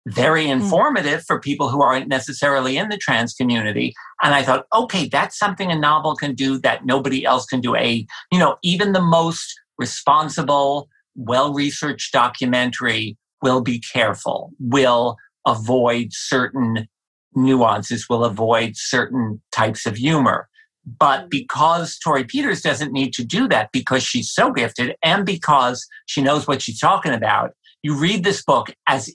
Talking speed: 155 wpm